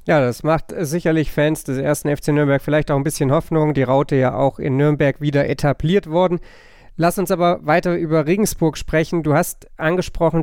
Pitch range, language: 130-155 Hz, German